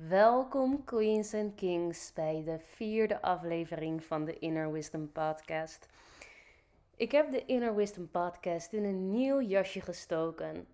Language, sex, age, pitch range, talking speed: Dutch, female, 20-39, 160-200 Hz, 135 wpm